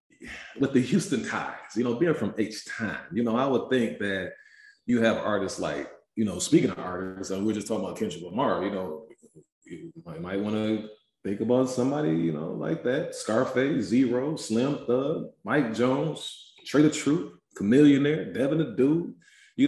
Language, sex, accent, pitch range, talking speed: English, male, American, 95-120 Hz, 180 wpm